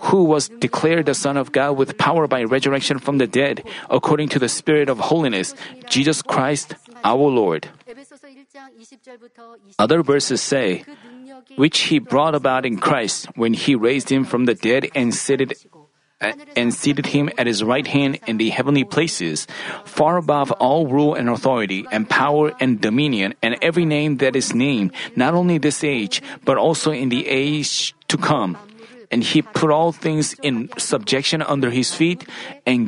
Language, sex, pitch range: Korean, male, 135-175 Hz